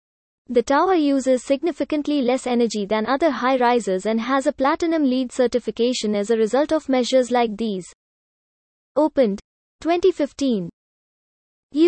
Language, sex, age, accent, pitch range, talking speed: English, female, 20-39, Indian, 235-295 Hz, 120 wpm